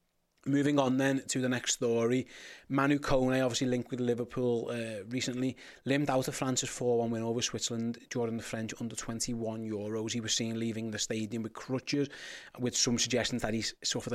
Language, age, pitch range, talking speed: English, 30-49, 120-140 Hz, 180 wpm